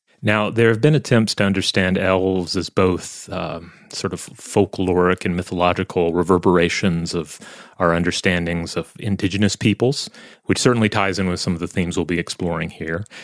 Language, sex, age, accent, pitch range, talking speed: English, male, 30-49, American, 90-105 Hz, 165 wpm